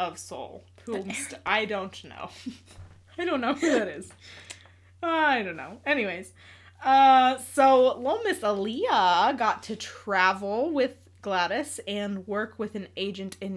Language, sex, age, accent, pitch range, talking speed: English, female, 20-39, American, 150-220 Hz, 140 wpm